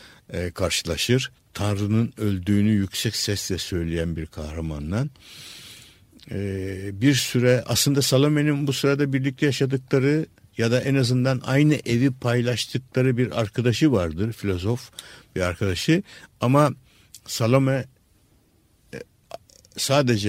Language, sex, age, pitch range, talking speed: Turkish, male, 60-79, 100-130 Hz, 95 wpm